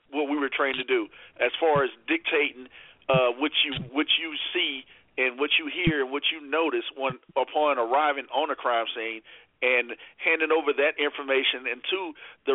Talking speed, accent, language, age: 185 wpm, American, English, 50-69